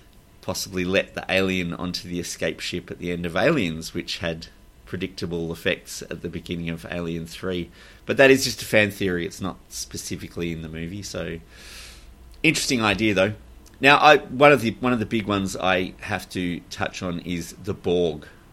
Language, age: English, 30-49